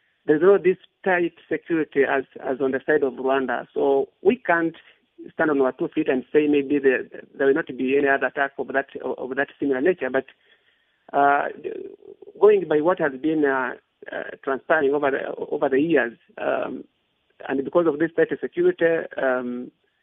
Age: 50-69